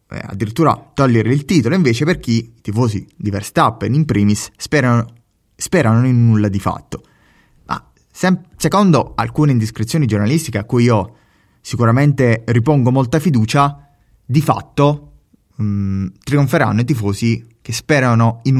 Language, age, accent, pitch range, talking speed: Italian, 20-39, native, 110-145 Hz, 135 wpm